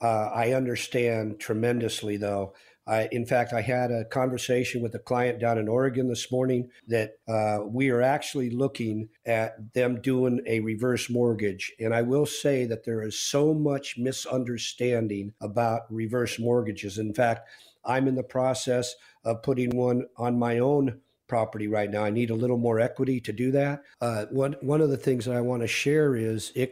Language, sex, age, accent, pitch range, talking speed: English, male, 50-69, American, 110-130 Hz, 180 wpm